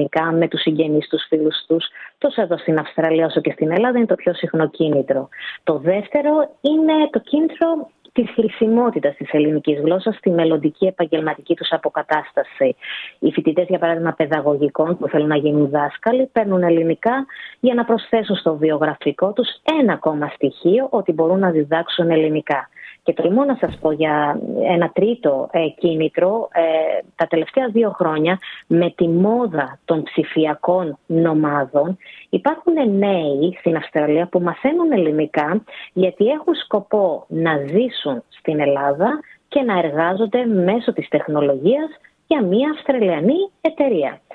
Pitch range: 155-225 Hz